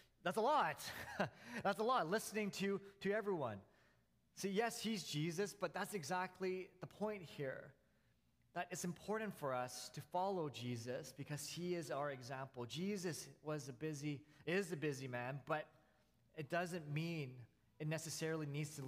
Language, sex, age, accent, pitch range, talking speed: English, male, 30-49, American, 135-170 Hz, 160 wpm